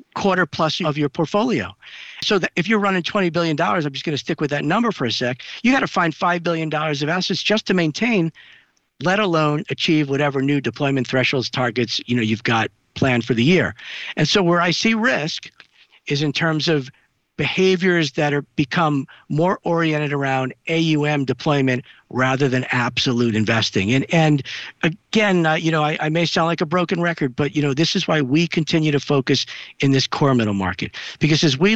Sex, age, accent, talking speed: male, 50-69, American, 195 wpm